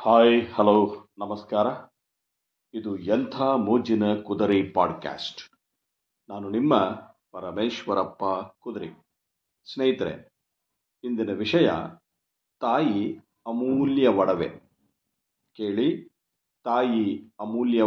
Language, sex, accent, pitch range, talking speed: Kannada, male, native, 105-130 Hz, 70 wpm